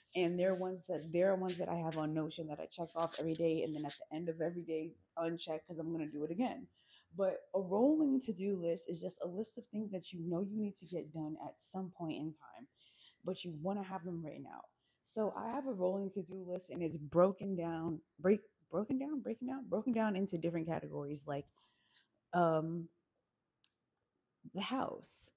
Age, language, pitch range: 20-39, English, 160-195 Hz